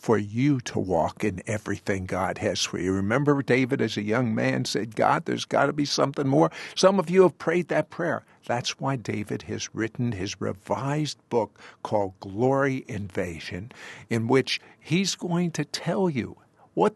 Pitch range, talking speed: 115-180 Hz, 175 wpm